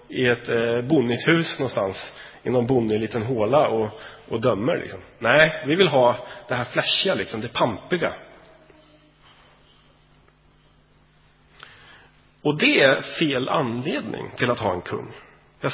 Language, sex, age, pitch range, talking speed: Swedish, male, 30-49, 115-145 Hz, 135 wpm